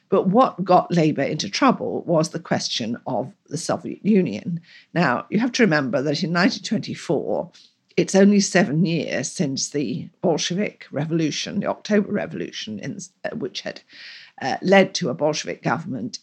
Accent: British